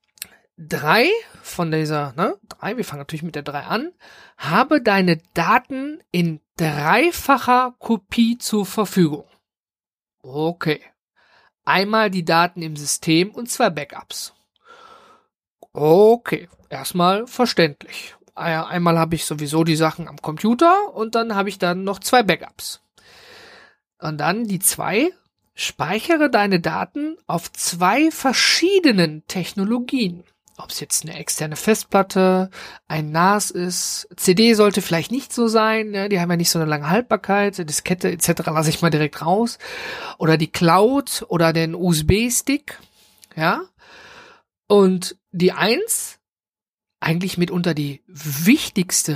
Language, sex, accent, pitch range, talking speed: German, male, German, 165-235 Hz, 125 wpm